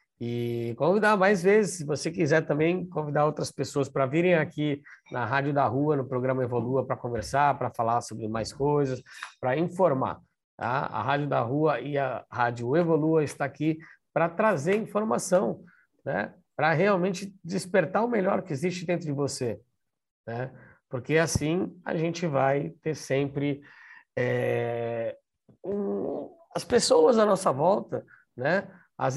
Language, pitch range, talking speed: Portuguese, 130-175 Hz, 150 wpm